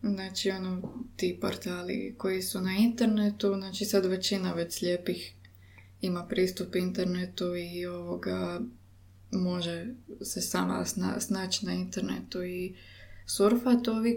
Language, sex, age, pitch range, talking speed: Croatian, female, 20-39, 180-210 Hz, 110 wpm